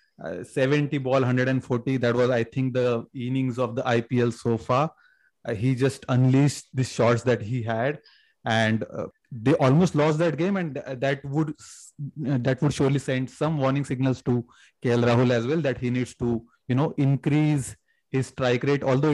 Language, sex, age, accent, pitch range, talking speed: English, male, 30-49, Indian, 120-135 Hz, 180 wpm